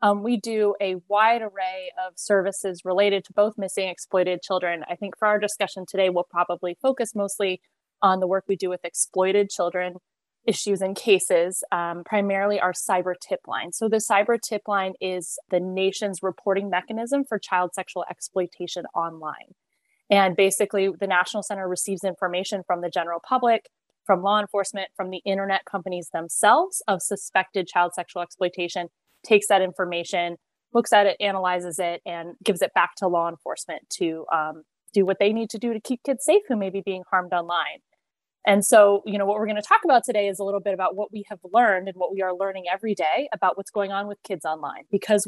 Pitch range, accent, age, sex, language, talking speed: 180-210 Hz, American, 20-39, female, English, 195 wpm